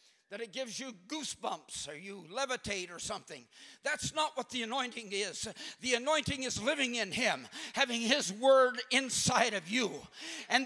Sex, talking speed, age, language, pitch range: male, 165 wpm, 50-69, English, 215-280 Hz